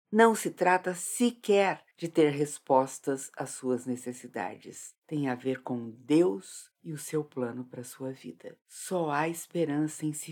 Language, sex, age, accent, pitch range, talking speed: Portuguese, female, 50-69, Brazilian, 125-185 Hz, 165 wpm